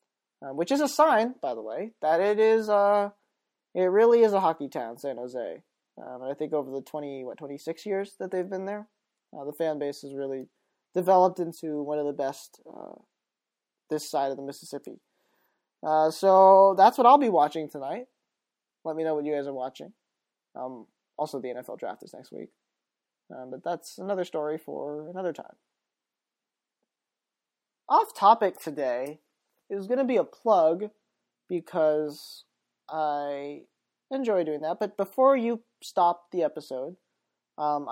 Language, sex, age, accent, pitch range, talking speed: English, male, 20-39, American, 145-205 Hz, 165 wpm